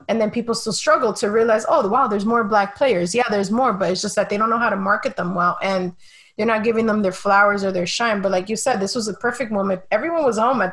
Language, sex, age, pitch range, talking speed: English, female, 20-39, 195-235 Hz, 290 wpm